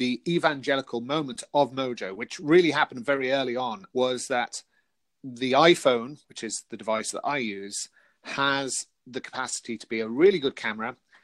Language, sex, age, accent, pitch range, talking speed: English, male, 40-59, British, 120-150 Hz, 165 wpm